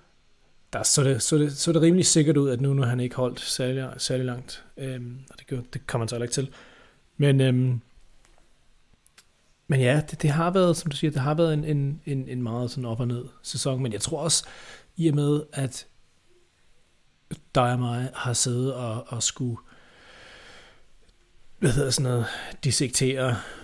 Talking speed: 180 wpm